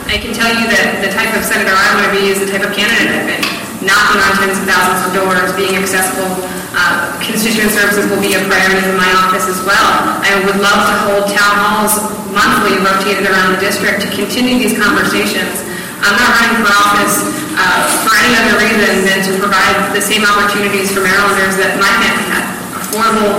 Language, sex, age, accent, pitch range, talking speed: English, female, 20-39, American, 190-220 Hz, 205 wpm